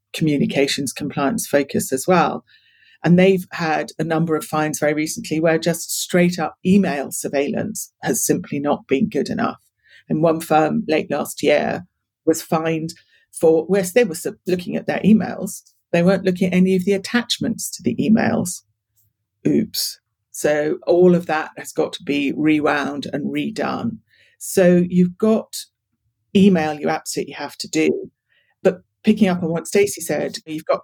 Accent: British